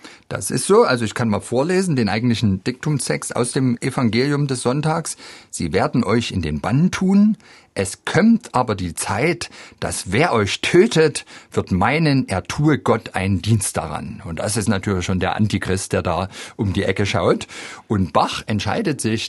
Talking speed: 175 wpm